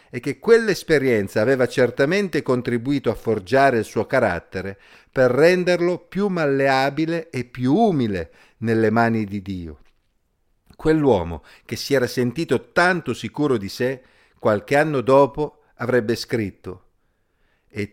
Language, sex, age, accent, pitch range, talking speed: Italian, male, 50-69, native, 105-140 Hz, 125 wpm